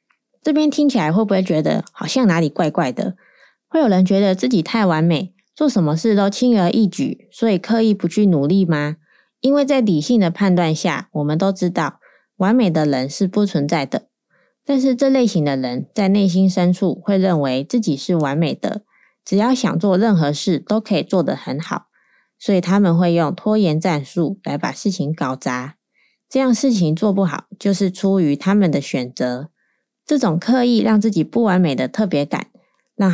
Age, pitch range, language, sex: 20-39, 165-215 Hz, Chinese, female